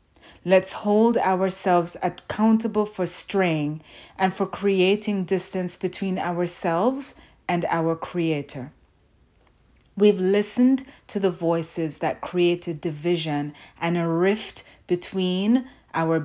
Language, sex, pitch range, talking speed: English, female, 165-200 Hz, 105 wpm